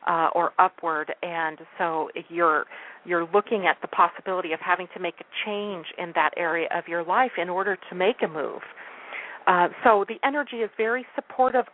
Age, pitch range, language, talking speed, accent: 40-59, 170-205 Hz, English, 185 wpm, American